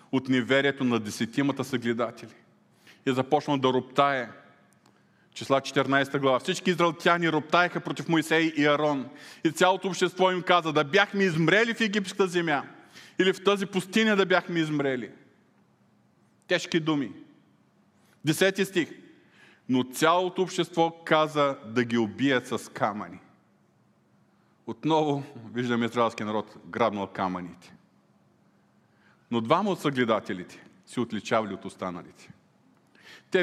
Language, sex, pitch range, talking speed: Bulgarian, male, 130-165 Hz, 115 wpm